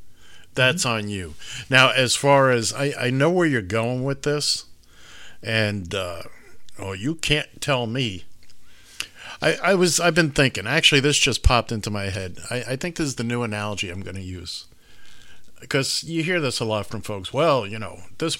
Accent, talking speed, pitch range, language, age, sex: American, 190 wpm, 100-155 Hz, English, 50-69, male